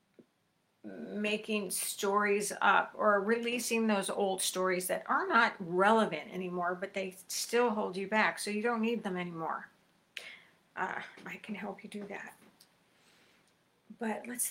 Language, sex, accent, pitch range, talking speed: English, female, American, 195-230 Hz, 140 wpm